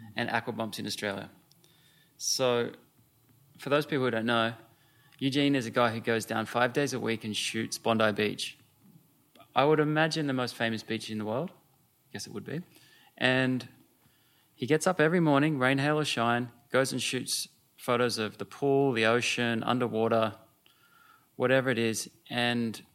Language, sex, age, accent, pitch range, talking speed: English, male, 20-39, Australian, 115-135 Hz, 175 wpm